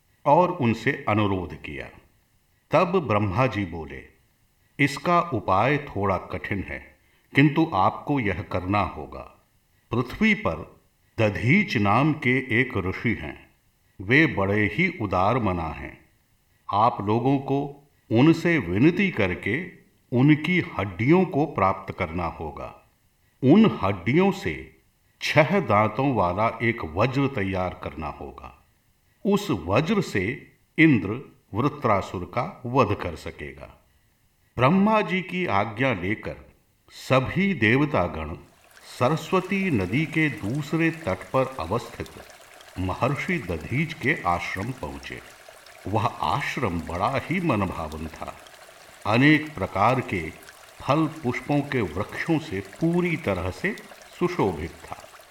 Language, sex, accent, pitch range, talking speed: Hindi, male, native, 95-150 Hz, 110 wpm